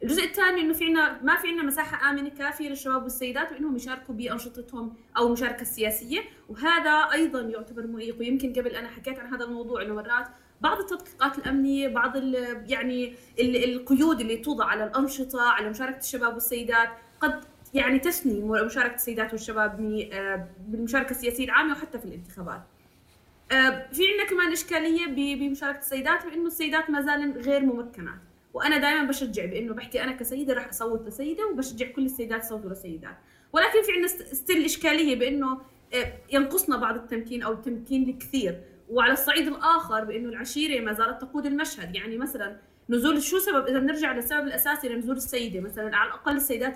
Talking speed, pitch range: 155 wpm, 230-290 Hz